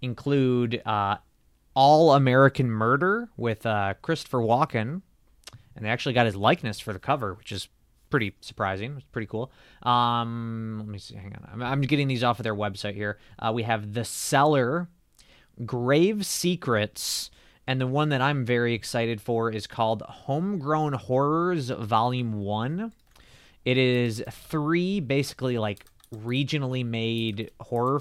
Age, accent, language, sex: 20-39, American, English, male